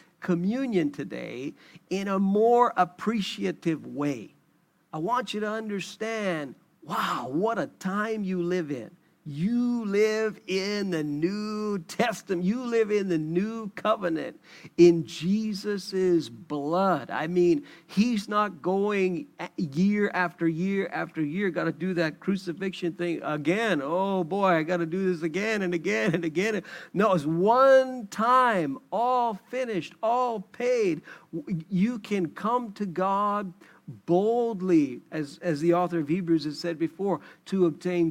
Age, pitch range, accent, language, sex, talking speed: 50-69, 170-205 Hz, American, English, male, 140 wpm